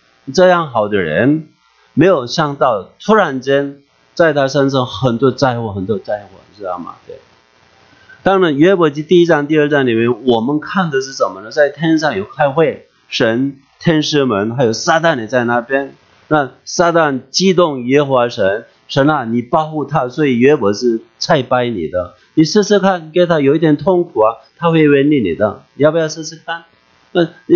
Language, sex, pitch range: English, male, 125-160 Hz